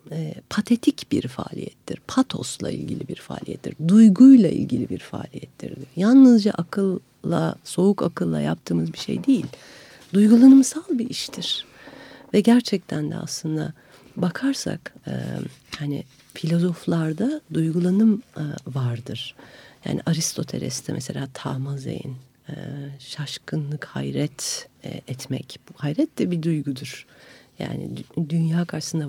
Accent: native